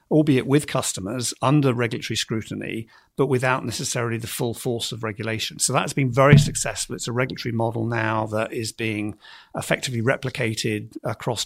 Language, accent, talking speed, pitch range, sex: English, British, 155 wpm, 110-130 Hz, male